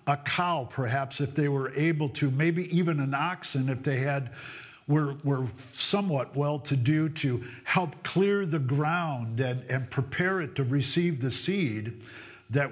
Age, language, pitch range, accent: 50-69, English, 130-170 Hz, American